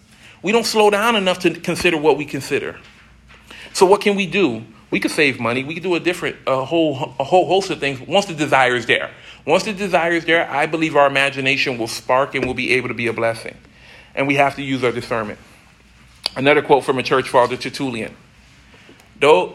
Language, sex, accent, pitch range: English, male, American, 130-165 Hz